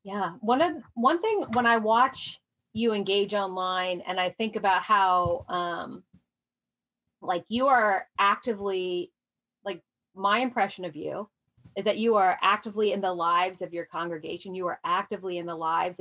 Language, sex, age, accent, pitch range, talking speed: English, female, 30-49, American, 180-225 Hz, 160 wpm